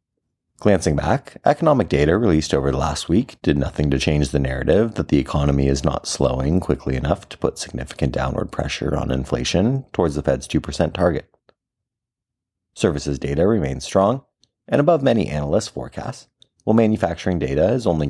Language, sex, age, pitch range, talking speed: English, male, 30-49, 70-105 Hz, 160 wpm